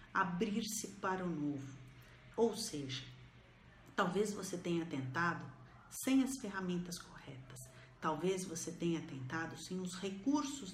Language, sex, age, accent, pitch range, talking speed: Portuguese, female, 50-69, Brazilian, 155-210 Hz, 115 wpm